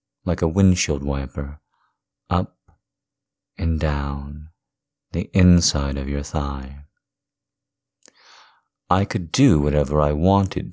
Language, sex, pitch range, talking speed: English, male, 70-115 Hz, 100 wpm